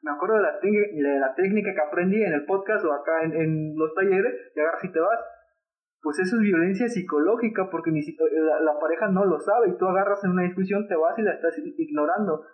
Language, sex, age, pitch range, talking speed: Spanish, male, 30-49, 160-205 Hz, 240 wpm